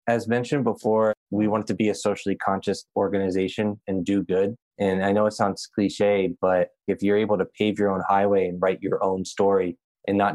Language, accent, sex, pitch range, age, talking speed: English, American, male, 100-110 Hz, 20-39, 210 wpm